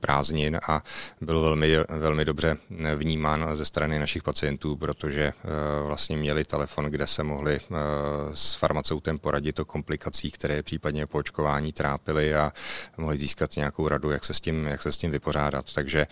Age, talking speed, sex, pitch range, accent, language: 30-49, 170 wpm, male, 75-80 Hz, native, Czech